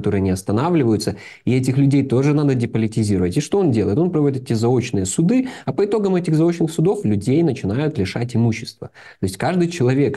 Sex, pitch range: male, 110-140 Hz